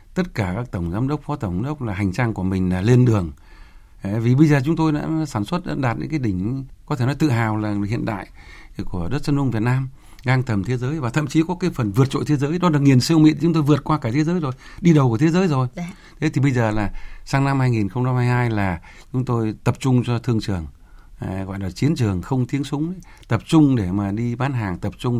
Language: Vietnamese